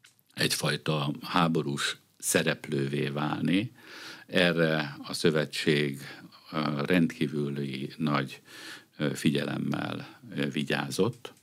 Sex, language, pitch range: male, Hungarian, 70-85 Hz